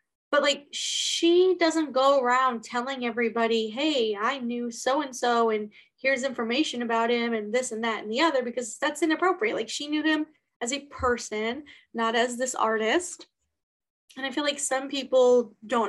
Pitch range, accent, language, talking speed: 230-290 Hz, American, English, 170 wpm